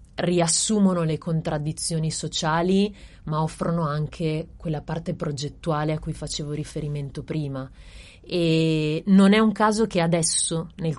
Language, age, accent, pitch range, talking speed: Italian, 30-49, native, 155-175 Hz, 125 wpm